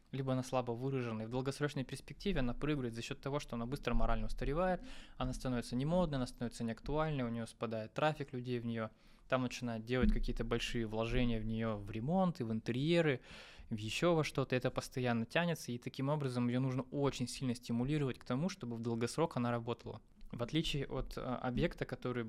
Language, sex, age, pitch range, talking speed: Russian, male, 20-39, 115-130 Hz, 200 wpm